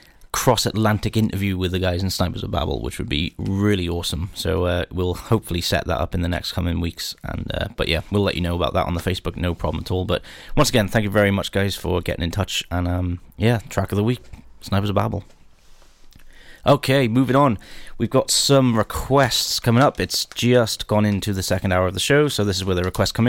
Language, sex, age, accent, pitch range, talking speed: English, male, 20-39, British, 90-115 Hz, 235 wpm